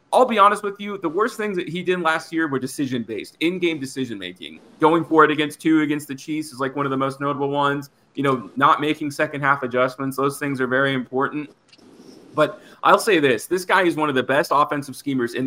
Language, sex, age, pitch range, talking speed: English, male, 30-49, 130-165 Hz, 240 wpm